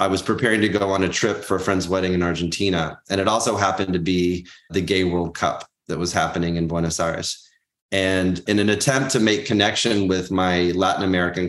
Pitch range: 90-105 Hz